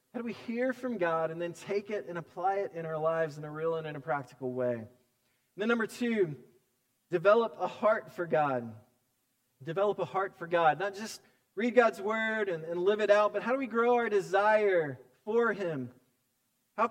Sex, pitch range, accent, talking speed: male, 165-240 Hz, American, 205 wpm